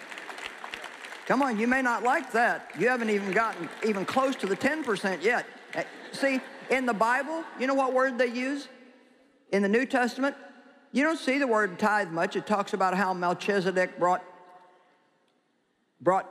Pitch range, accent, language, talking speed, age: 175-245 Hz, American, English, 165 wpm, 50-69